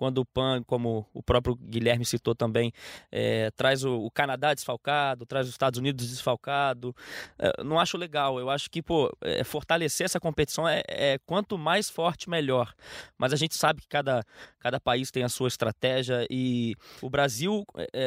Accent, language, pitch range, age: Brazilian, Portuguese, 125-165 Hz, 20-39